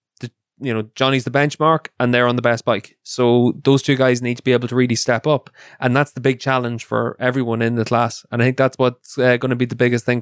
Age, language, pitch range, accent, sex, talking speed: 20-39, English, 120-145 Hz, Irish, male, 260 wpm